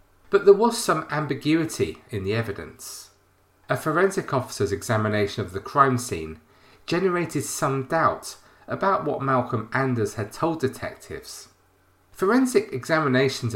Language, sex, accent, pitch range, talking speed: English, male, British, 105-155 Hz, 125 wpm